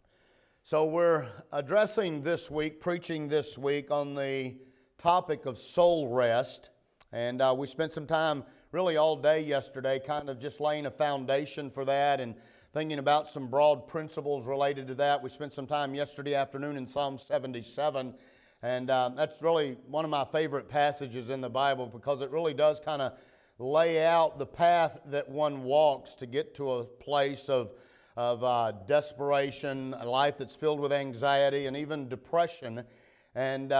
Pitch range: 130-155 Hz